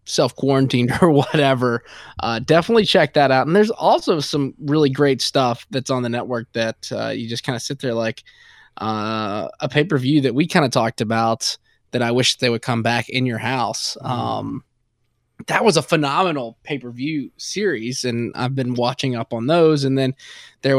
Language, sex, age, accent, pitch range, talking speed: English, male, 20-39, American, 115-135 Hz, 185 wpm